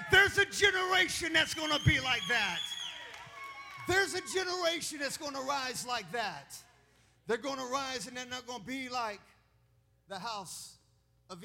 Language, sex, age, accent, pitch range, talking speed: English, male, 40-59, American, 245-325 Hz, 170 wpm